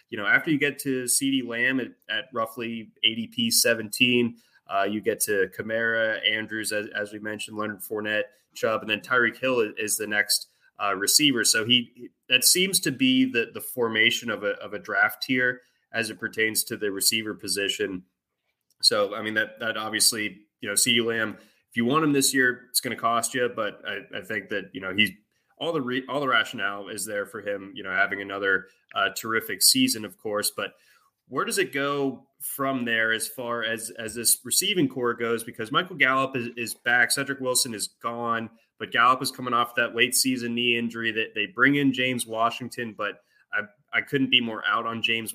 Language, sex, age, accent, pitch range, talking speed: English, male, 20-39, American, 110-135 Hz, 205 wpm